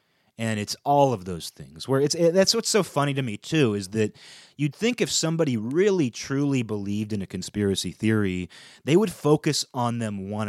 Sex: male